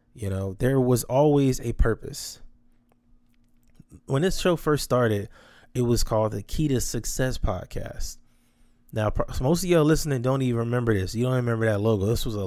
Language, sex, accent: English, male, American